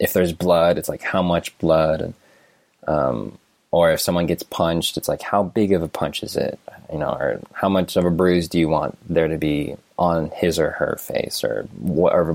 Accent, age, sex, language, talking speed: American, 20-39, male, English, 220 wpm